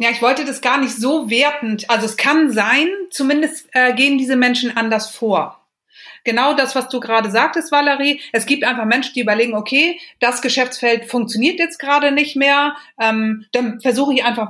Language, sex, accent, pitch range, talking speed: German, female, German, 215-265 Hz, 185 wpm